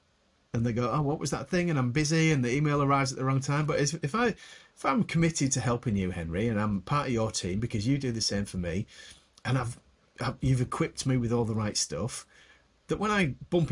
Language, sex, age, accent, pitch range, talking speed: English, male, 40-59, British, 110-150 Hz, 260 wpm